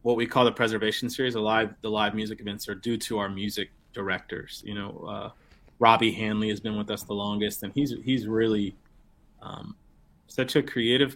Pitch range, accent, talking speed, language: 100-120 Hz, American, 200 wpm, English